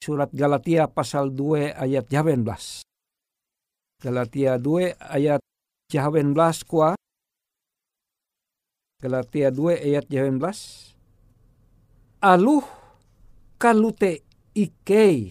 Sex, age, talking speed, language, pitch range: male, 50-69, 65 wpm, Indonesian, 145-200 Hz